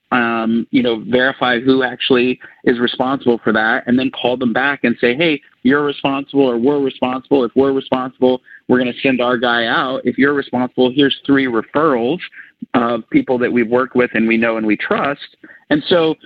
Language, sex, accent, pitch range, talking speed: English, male, American, 120-145 Hz, 195 wpm